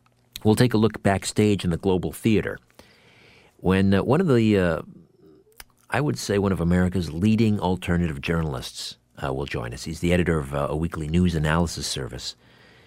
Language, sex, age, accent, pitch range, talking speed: English, male, 50-69, American, 75-100 Hz, 175 wpm